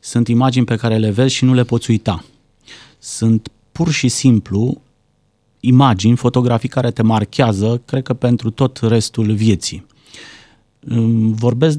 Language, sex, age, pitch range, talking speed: Romanian, male, 30-49, 110-135 Hz, 135 wpm